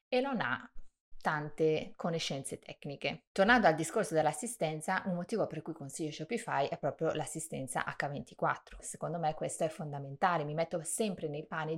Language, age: Italian, 30-49